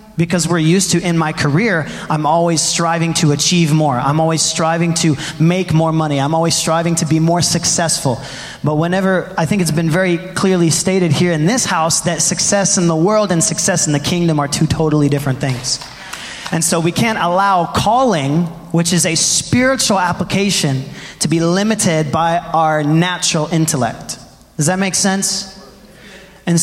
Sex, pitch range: male, 155-185 Hz